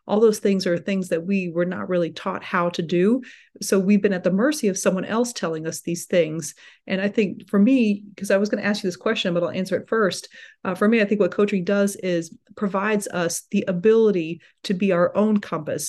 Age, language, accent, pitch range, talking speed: 40-59, English, American, 175-205 Hz, 240 wpm